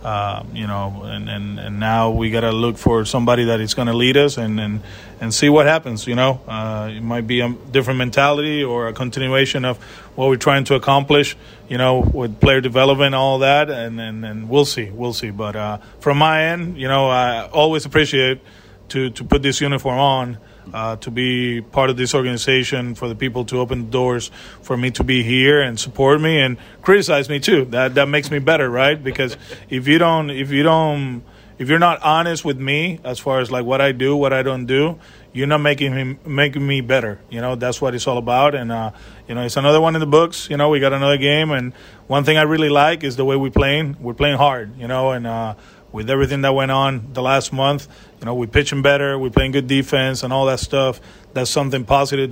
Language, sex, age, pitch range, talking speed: English, male, 30-49, 120-140 Hz, 230 wpm